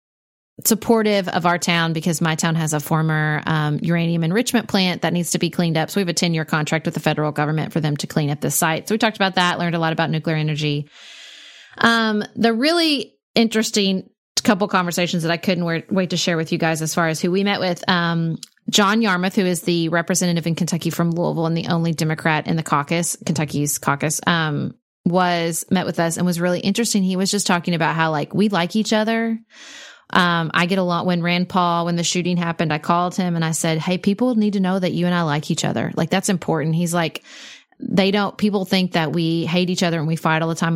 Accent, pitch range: American, 160-195 Hz